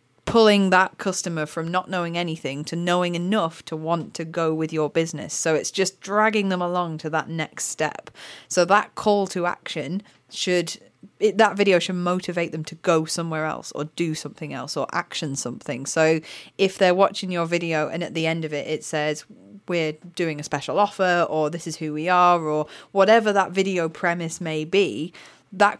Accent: British